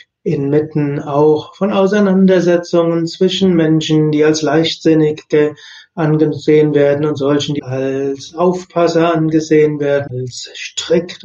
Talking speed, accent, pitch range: 105 wpm, German, 145-175 Hz